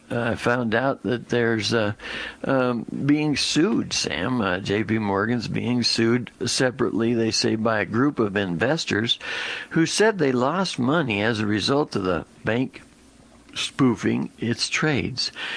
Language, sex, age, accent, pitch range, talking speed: English, male, 60-79, American, 85-125 Hz, 145 wpm